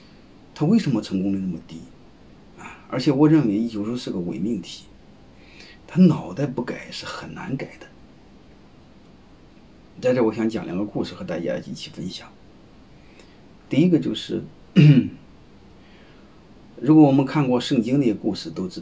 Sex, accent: male, native